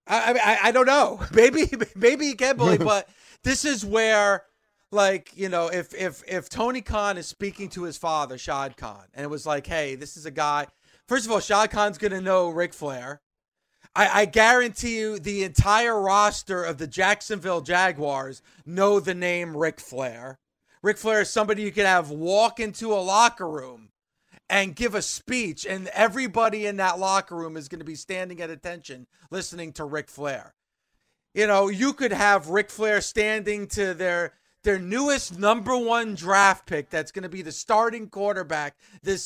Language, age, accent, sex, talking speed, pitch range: English, 30-49, American, male, 185 wpm, 175-215 Hz